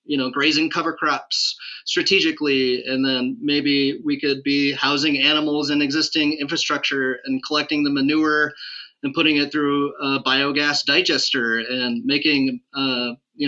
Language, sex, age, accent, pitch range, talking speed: English, male, 30-49, American, 135-155 Hz, 145 wpm